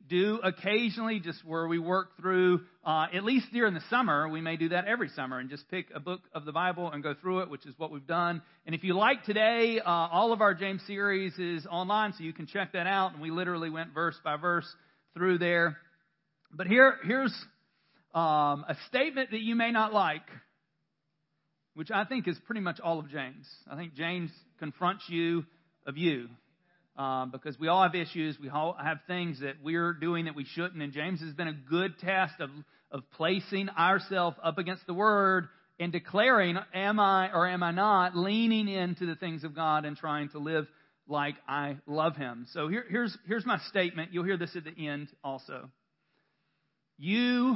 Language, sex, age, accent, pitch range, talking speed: English, male, 40-59, American, 155-195 Hz, 200 wpm